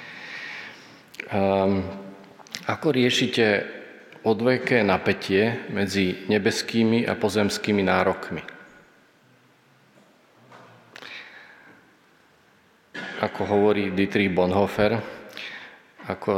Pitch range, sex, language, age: 95-110 Hz, male, Slovak, 40-59